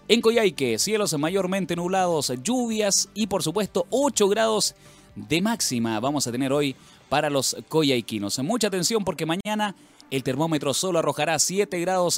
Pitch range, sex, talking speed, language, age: 130-200 Hz, male, 150 wpm, Spanish, 30-49